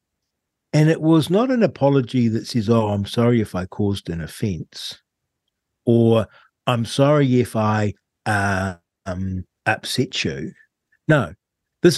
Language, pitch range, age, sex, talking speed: English, 105-150 Hz, 60-79, male, 135 wpm